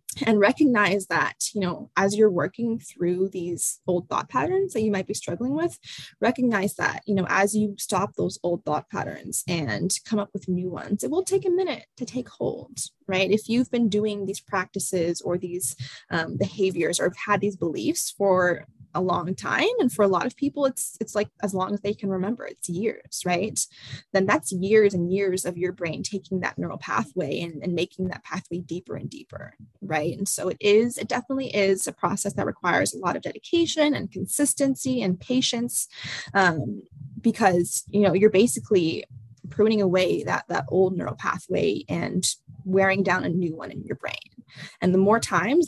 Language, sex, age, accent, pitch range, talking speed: English, female, 20-39, American, 180-230 Hz, 195 wpm